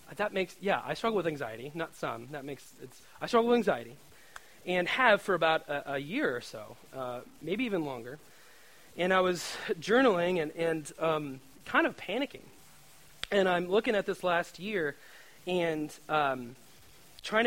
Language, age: English, 30-49